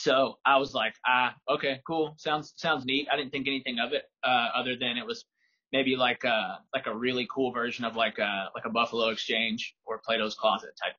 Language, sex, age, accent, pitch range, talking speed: English, male, 20-39, American, 120-135 Hz, 220 wpm